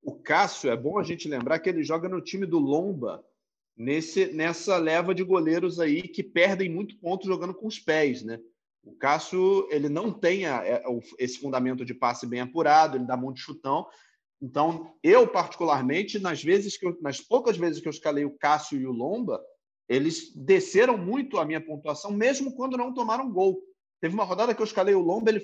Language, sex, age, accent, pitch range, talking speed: Portuguese, male, 40-59, Brazilian, 145-220 Hz, 190 wpm